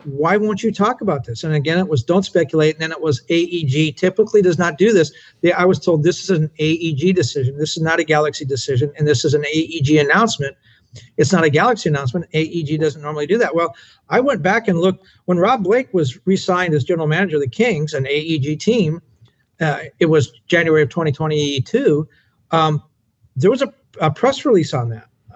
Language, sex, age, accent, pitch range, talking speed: English, male, 50-69, American, 140-185 Hz, 210 wpm